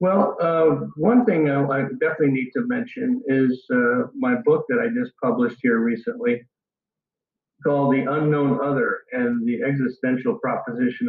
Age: 50-69